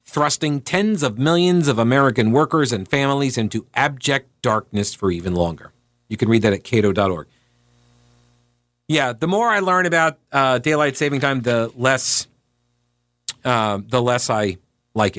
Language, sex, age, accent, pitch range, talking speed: English, male, 40-59, American, 120-155 Hz, 150 wpm